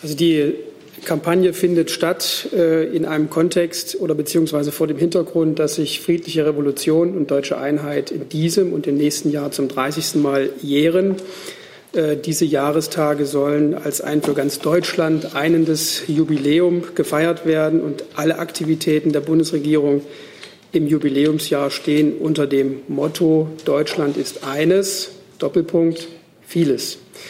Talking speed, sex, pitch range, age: 130 wpm, male, 150-175 Hz, 40-59